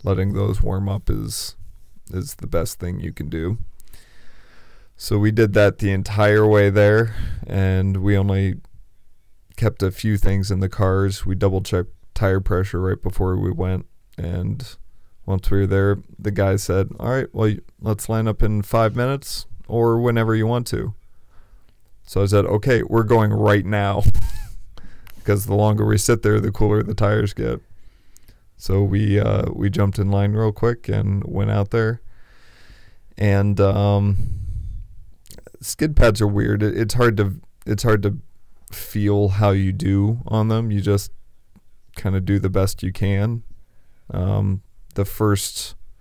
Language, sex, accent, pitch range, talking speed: English, male, American, 95-105 Hz, 160 wpm